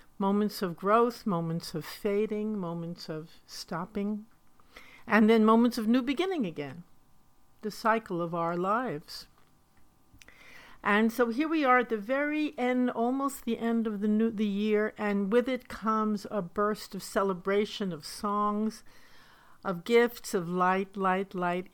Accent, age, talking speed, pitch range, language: American, 60-79, 150 wpm, 185-230 Hz, English